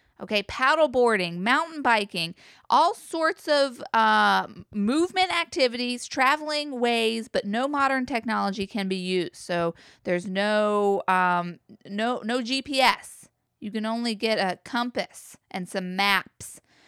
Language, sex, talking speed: English, female, 130 wpm